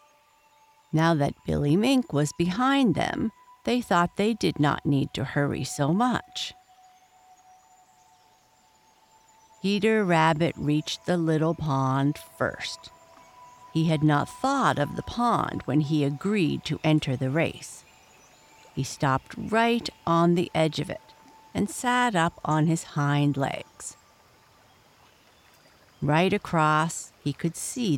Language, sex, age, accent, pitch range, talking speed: English, female, 60-79, American, 145-205 Hz, 125 wpm